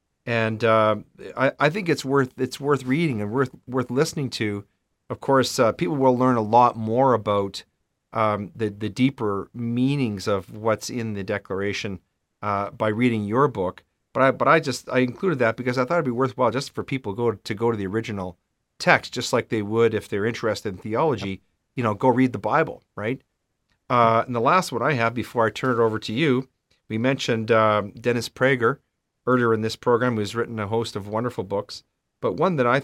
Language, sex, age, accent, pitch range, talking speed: English, male, 40-59, American, 110-130 Hz, 210 wpm